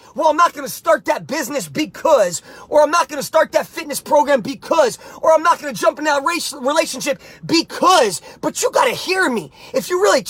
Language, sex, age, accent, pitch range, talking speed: English, male, 30-49, American, 280-370 Hz, 220 wpm